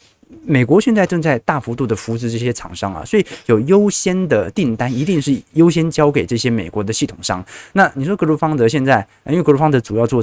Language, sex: Chinese, male